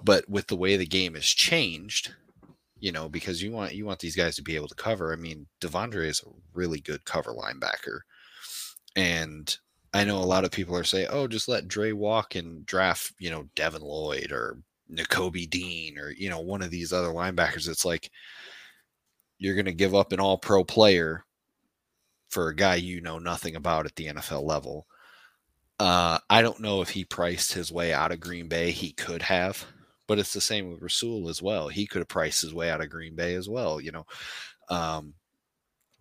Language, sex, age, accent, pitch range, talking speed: English, male, 30-49, American, 85-100 Hz, 205 wpm